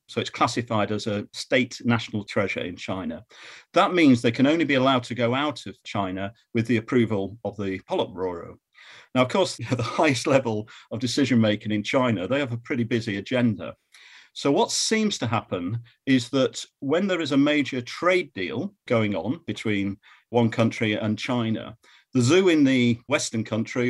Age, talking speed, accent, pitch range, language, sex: 40-59, 180 wpm, British, 105-130 Hz, English, male